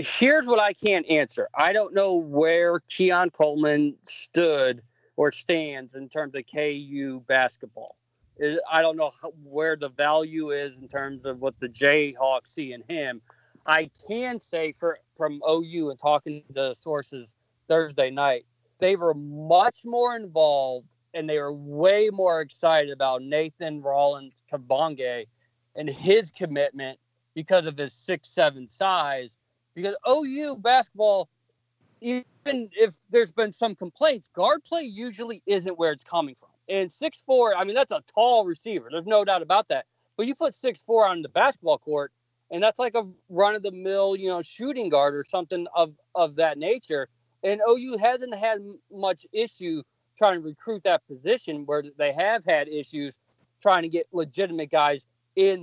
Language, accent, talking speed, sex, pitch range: English, American, 160 wpm, male, 140-205 Hz